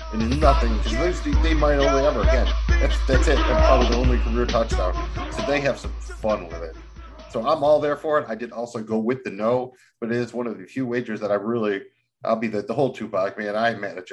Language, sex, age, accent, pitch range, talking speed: English, male, 40-59, American, 110-135 Hz, 245 wpm